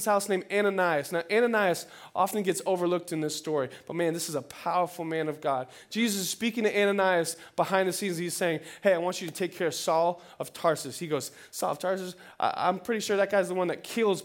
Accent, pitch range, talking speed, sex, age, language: American, 175-225 Hz, 235 wpm, male, 20-39, English